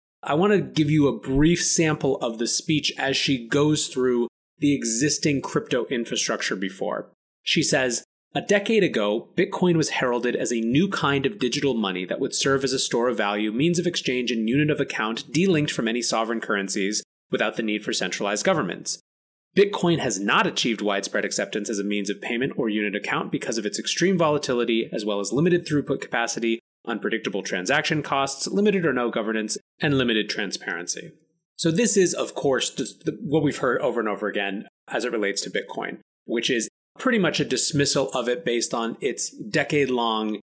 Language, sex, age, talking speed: English, male, 30-49, 185 wpm